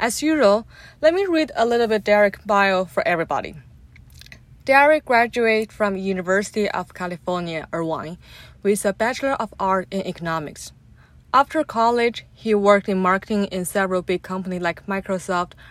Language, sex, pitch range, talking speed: English, female, 185-220 Hz, 145 wpm